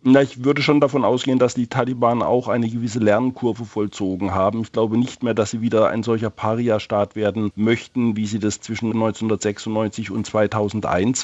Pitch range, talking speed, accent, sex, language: 105-115 Hz, 175 wpm, German, male, German